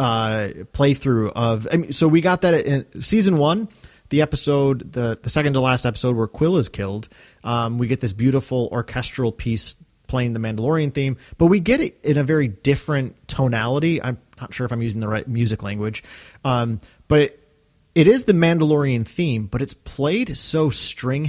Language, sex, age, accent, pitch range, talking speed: English, male, 30-49, American, 120-155 Hz, 190 wpm